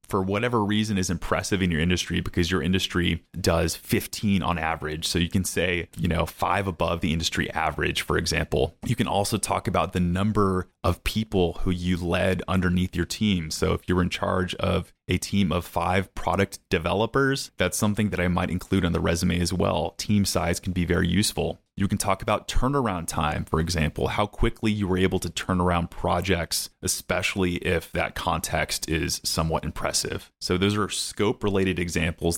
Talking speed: 185 wpm